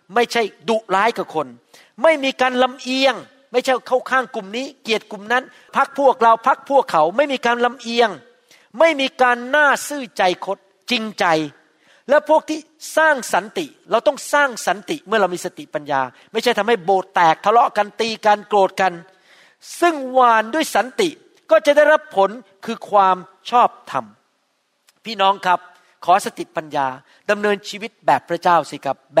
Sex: male